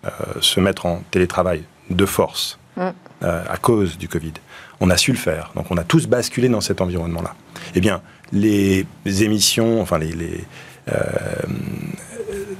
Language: French